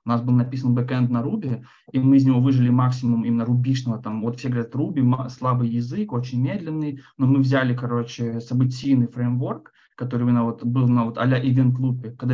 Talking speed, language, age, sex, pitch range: 195 wpm, Russian, 20-39, male, 115-130 Hz